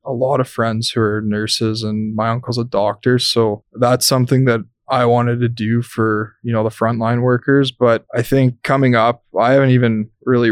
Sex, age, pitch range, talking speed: male, 20-39, 110-125 Hz, 200 wpm